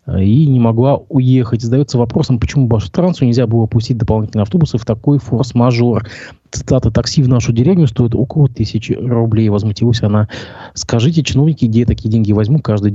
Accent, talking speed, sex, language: native, 160 wpm, male, Russian